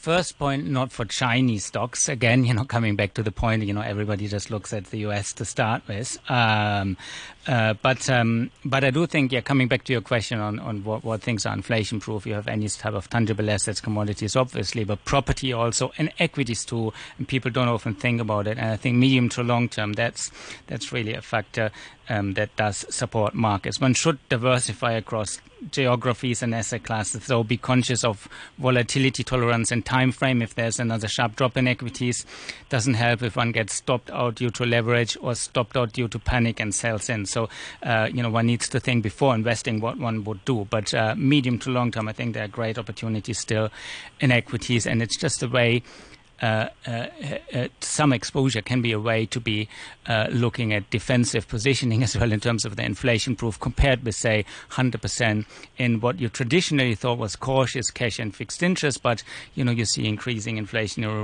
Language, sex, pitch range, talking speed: English, male, 110-125 Hz, 205 wpm